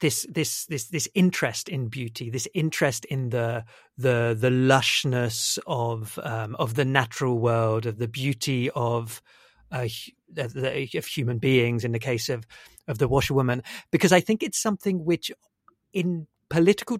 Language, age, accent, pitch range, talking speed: English, 50-69, British, 130-165 Hz, 150 wpm